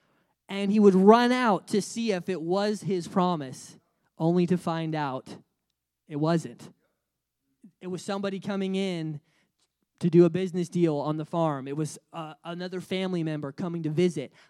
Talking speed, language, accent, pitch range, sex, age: 165 wpm, English, American, 175-220 Hz, male, 20-39